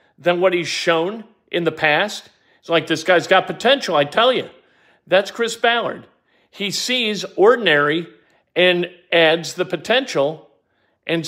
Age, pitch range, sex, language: 50-69, 170-230 Hz, male, English